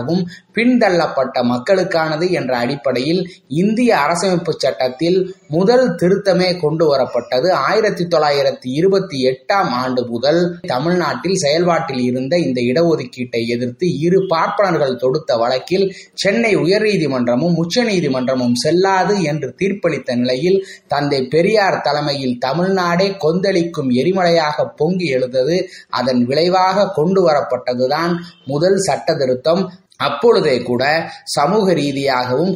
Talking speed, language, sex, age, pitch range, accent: 75 wpm, Tamil, male, 20-39, 130-185 Hz, native